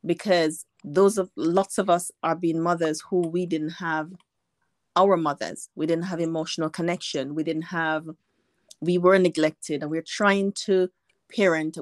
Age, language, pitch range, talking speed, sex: 30-49, English, 160-195 Hz, 155 wpm, female